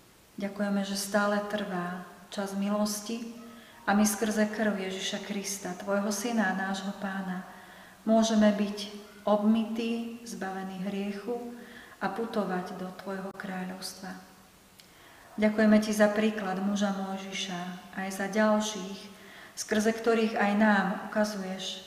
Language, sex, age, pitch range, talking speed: Slovak, female, 30-49, 190-215 Hz, 115 wpm